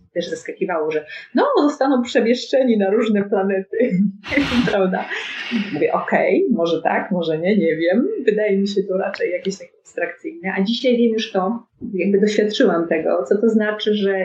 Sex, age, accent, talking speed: female, 30-49, native, 165 wpm